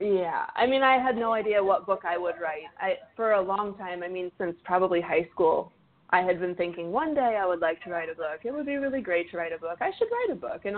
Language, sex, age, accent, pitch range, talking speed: English, female, 20-39, American, 170-210 Hz, 285 wpm